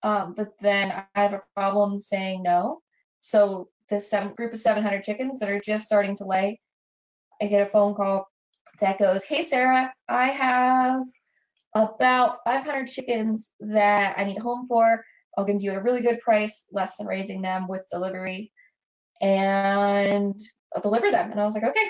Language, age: English, 20-39